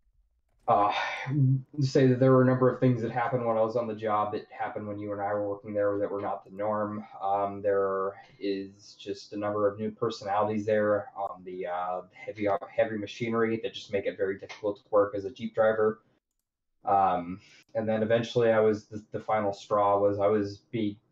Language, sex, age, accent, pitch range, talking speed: English, male, 20-39, American, 100-125 Hz, 205 wpm